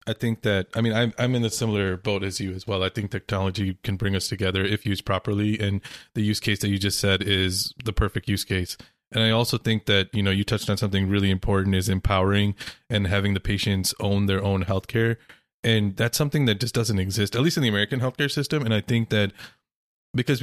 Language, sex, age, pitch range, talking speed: English, male, 20-39, 100-115 Hz, 240 wpm